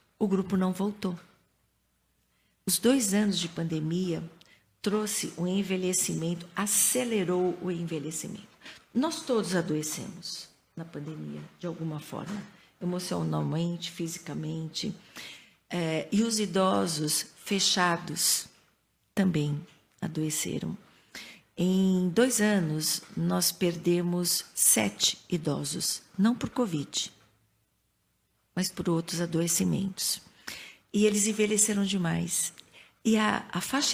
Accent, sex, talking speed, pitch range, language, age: Brazilian, female, 95 wpm, 165-200 Hz, Portuguese, 50-69